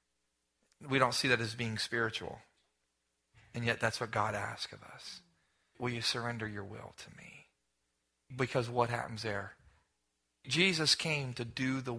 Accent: American